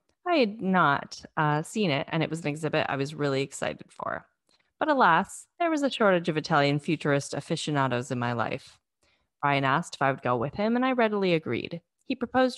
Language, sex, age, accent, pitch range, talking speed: English, female, 20-39, American, 145-210 Hz, 205 wpm